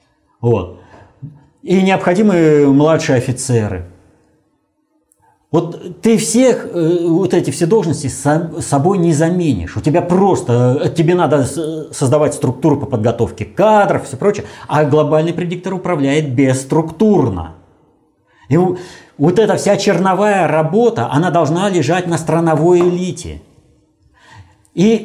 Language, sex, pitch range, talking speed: Russian, male, 140-190 Hz, 115 wpm